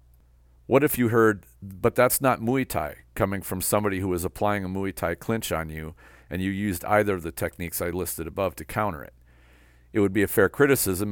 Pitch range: 75-100 Hz